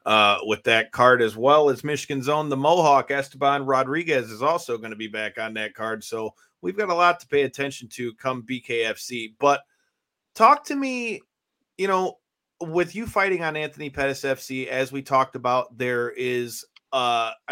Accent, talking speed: American, 180 wpm